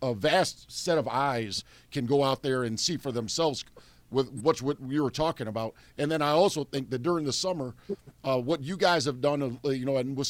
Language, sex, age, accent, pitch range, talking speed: English, male, 50-69, American, 120-145 Hz, 235 wpm